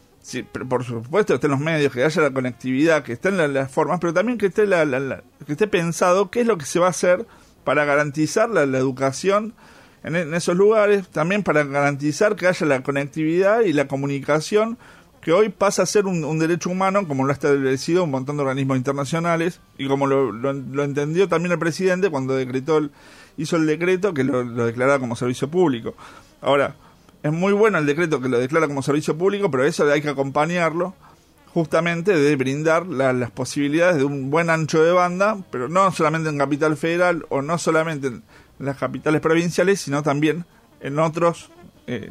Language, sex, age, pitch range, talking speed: Spanish, male, 40-59, 140-180 Hz, 195 wpm